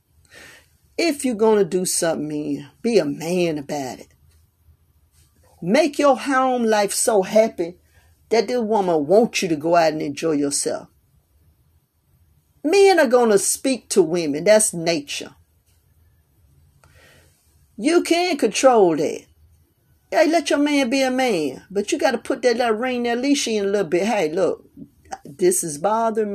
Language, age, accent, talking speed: English, 40-59, American, 155 wpm